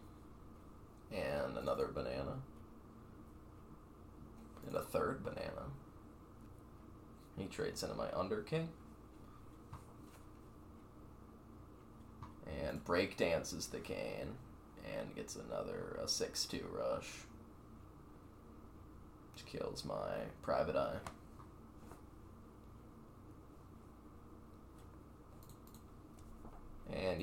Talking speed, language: 65 wpm, English